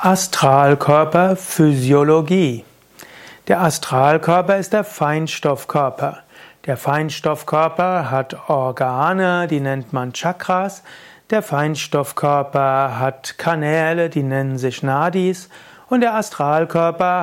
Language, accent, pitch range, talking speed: German, German, 145-180 Hz, 85 wpm